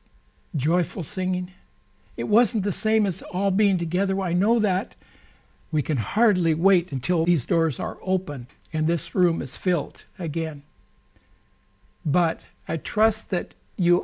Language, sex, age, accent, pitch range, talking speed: English, male, 60-79, American, 155-200 Hz, 145 wpm